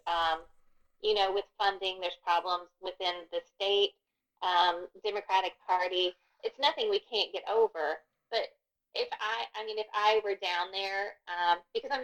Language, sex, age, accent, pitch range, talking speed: English, female, 30-49, American, 175-230 Hz, 160 wpm